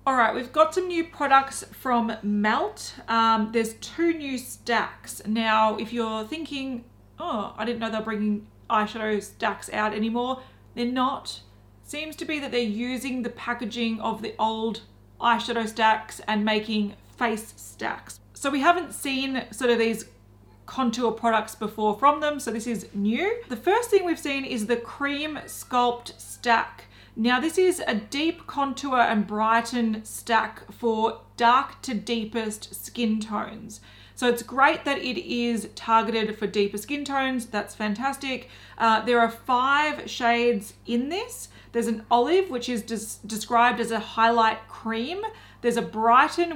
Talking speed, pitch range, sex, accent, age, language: 155 wpm, 220-260 Hz, female, Australian, 30-49, English